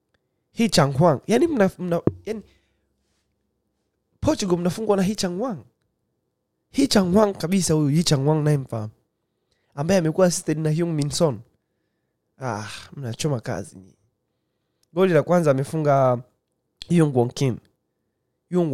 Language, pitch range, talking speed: Swahili, 125-175 Hz, 110 wpm